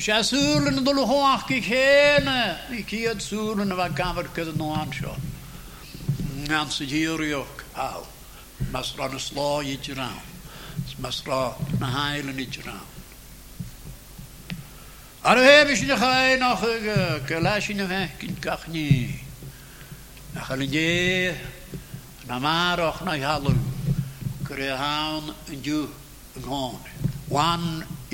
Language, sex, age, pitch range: English, male, 60-79, 145-180 Hz